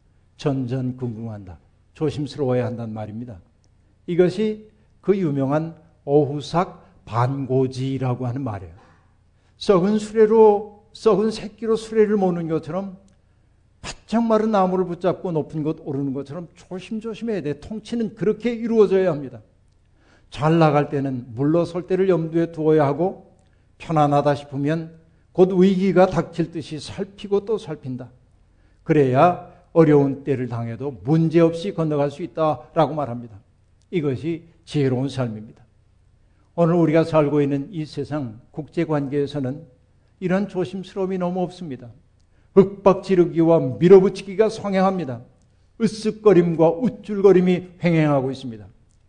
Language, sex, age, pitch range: Korean, male, 60-79, 125-185 Hz